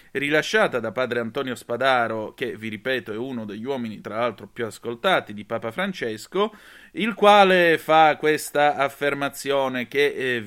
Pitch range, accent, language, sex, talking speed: 120-155 Hz, native, Italian, male, 150 wpm